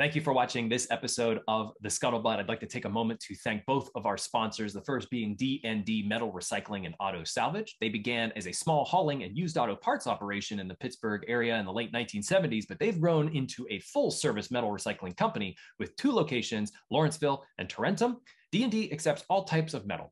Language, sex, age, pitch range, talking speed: English, male, 20-39, 115-175 Hz, 210 wpm